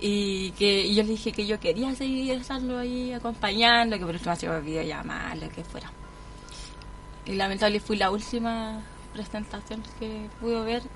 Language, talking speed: Spanish, 165 wpm